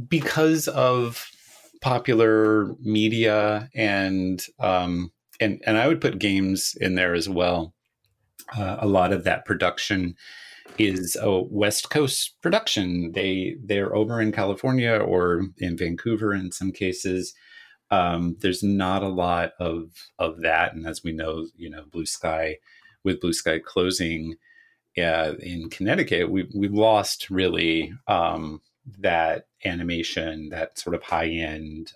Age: 30-49